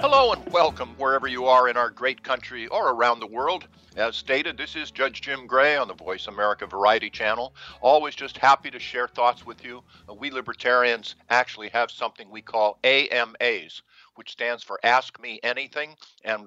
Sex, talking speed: male, 185 wpm